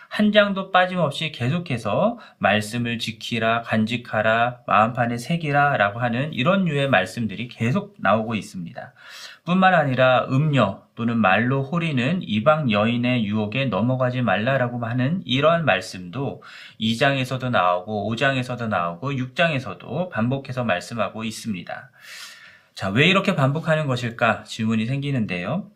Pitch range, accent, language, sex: 115-150 Hz, native, Korean, male